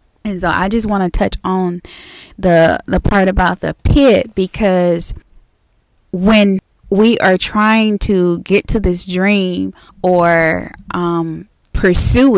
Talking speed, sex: 130 wpm, female